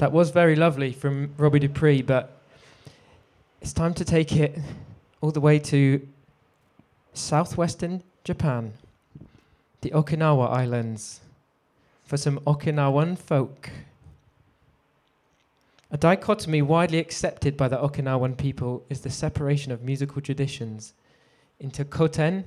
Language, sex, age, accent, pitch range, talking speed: English, male, 20-39, British, 130-150 Hz, 110 wpm